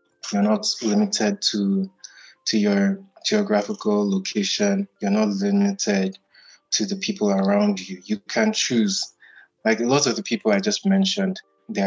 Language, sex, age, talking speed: Swahili, male, 20-39, 145 wpm